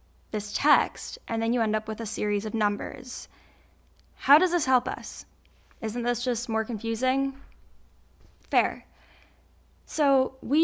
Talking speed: 140 wpm